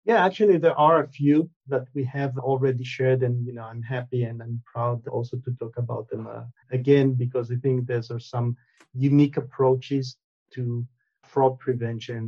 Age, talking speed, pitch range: 40-59, 175 wpm, 125-145 Hz